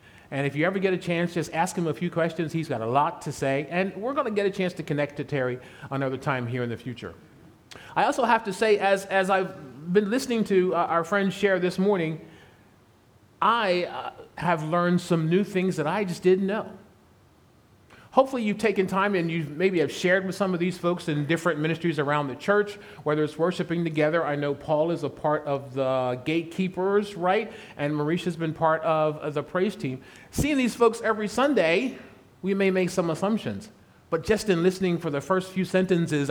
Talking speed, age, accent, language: 210 wpm, 40-59, American, English